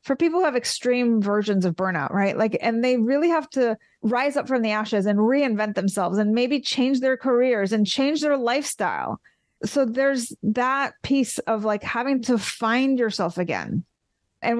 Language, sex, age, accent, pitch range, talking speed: English, female, 30-49, American, 210-265 Hz, 180 wpm